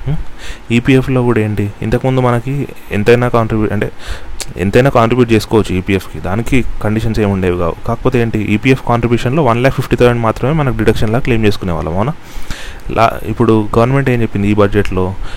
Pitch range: 100-120 Hz